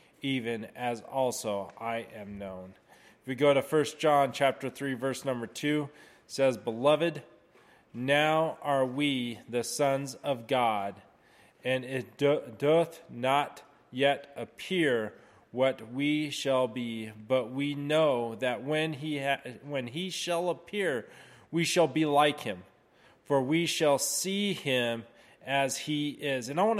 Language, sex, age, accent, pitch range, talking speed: English, male, 30-49, American, 130-165 Hz, 145 wpm